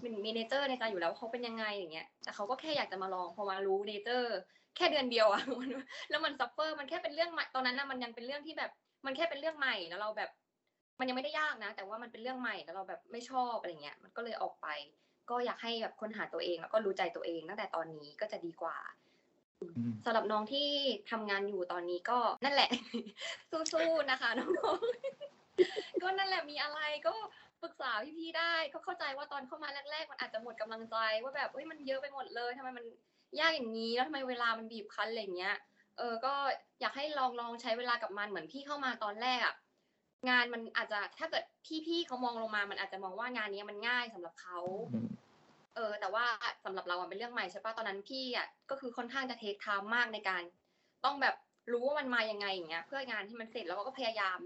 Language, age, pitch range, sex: Thai, 20-39, 205-280 Hz, female